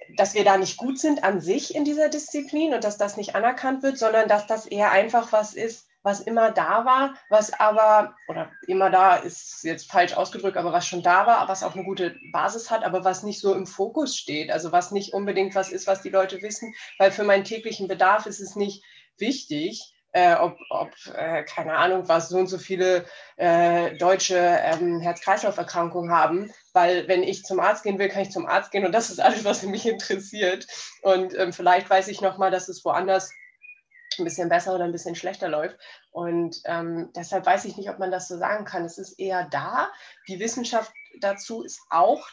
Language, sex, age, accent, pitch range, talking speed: German, female, 20-39, German, 185-220 Hz, 210 wpm